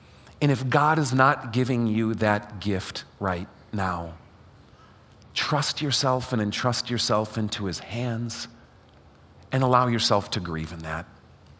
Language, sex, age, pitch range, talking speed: English, male, 40-59, 95-130 Hz, 135 wpm